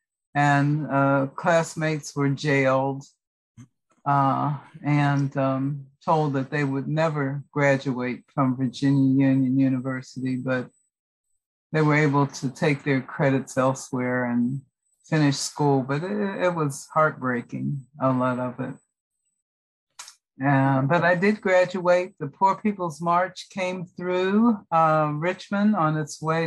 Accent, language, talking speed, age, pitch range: American, English, 125 wpm, 50-69, 135-160 Hz